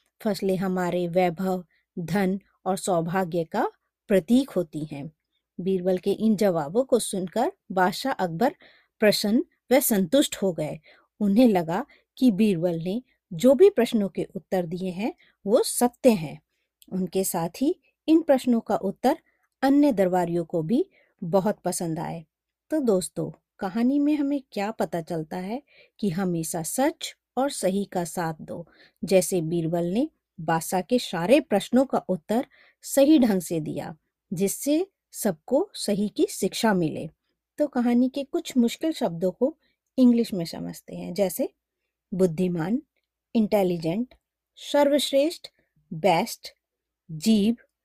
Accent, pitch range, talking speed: native, 185-260 Hz, 130 wpm